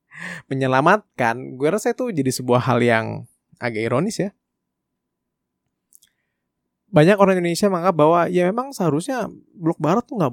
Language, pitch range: Indonesian, 130-180 Hz